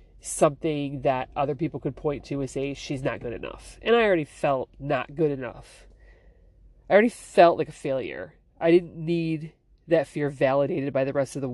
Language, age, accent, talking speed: English, 30-49, American, 195 wpm